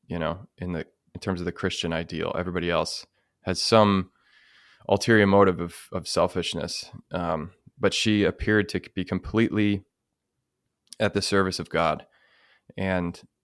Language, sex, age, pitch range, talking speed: English, male, 20-39, 85-100 Hz, 145 wpm